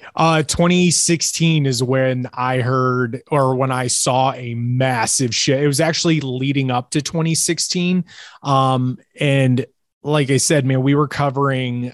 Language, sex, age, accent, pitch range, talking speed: English, male, 20-39, American, 120-140 Hz, 145 wpm